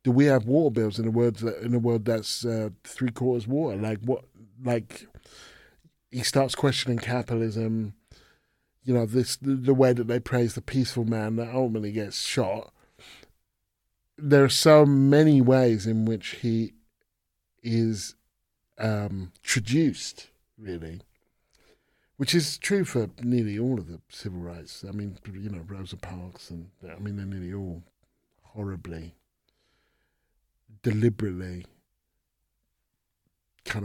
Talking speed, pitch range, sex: 135 wpm, 100-125 Hz, male